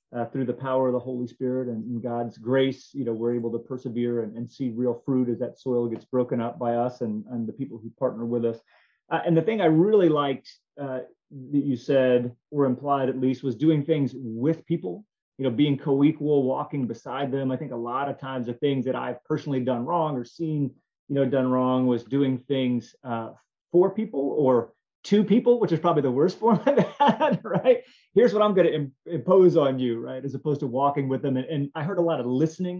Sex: male